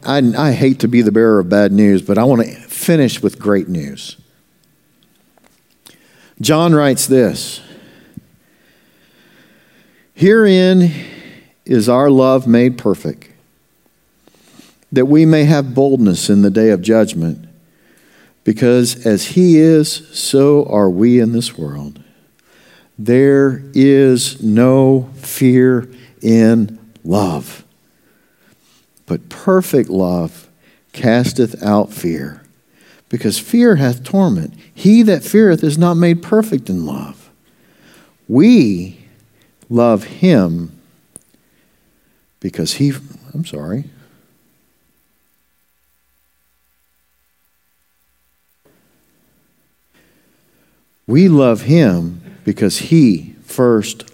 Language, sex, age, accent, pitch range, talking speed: English, male, 50-69, American, 90-140 Hz, 95 wpm